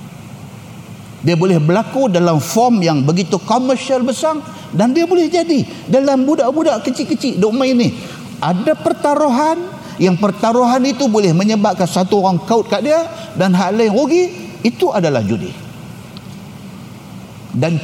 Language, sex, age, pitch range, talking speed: Malay, male, 50-69, 155-225 Hz, 130 wpm